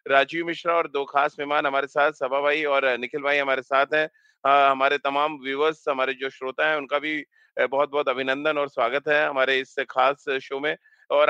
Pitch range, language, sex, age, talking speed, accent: 145-165 Hz, Hindi, male, 40-59, 195 wpm, native